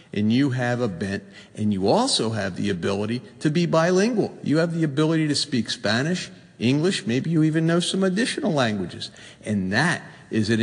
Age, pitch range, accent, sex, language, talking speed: 50-69, 100-125 Hz, American, male, English, 185 wpm